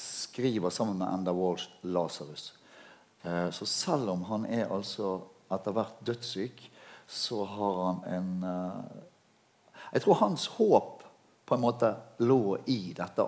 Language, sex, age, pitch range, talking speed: English, male, 60-79, 90-120 Hz, 135 wpm